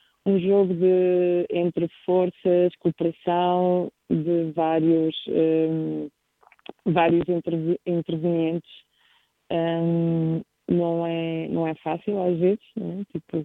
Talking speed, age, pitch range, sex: 95 wpm, 20-39, 155-175 Hz, female